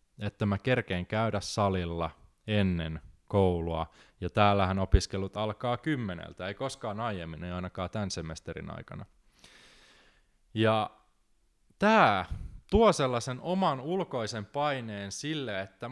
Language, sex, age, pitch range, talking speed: Finnish, male, 20-39, 100-130 Hz, 110 wpm